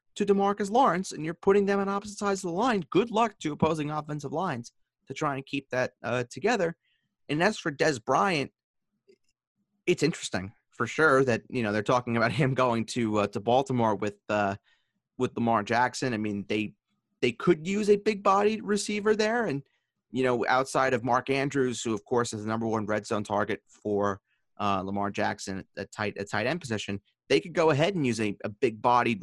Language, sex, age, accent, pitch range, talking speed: English, male, 30-49, American, 115-165 Hz, 200 wpm